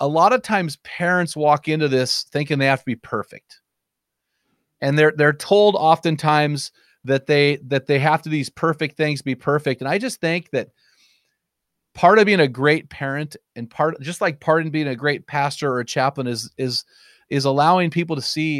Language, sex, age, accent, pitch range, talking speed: English, male, 30-49, American, 135-170 Hz, 195 wpm